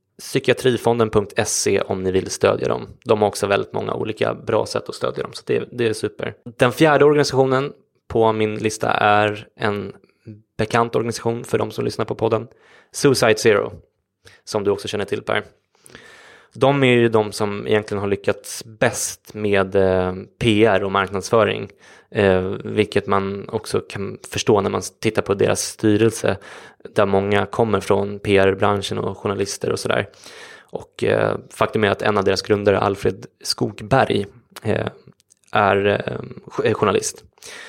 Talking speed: 145 wpm